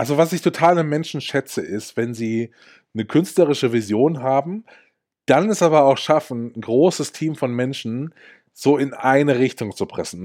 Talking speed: 175 wpm